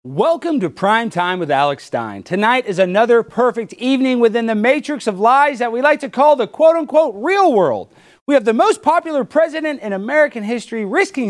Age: 40-59